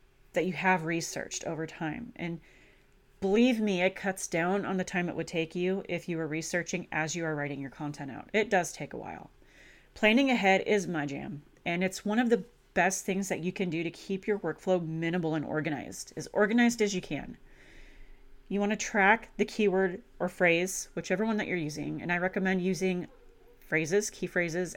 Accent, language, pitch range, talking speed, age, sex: American, English, 165-205 Hz, 200 wpm, 30-49, female